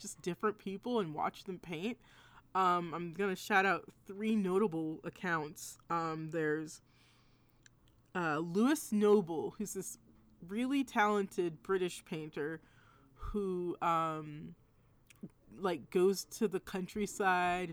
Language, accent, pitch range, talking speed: English, American, 160-205 Hz, 110 wpm